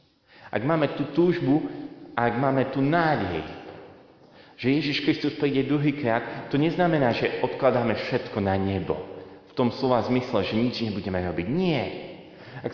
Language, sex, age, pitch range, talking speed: Slovak, male, 30-49, 110-140 Hz, 150 wpm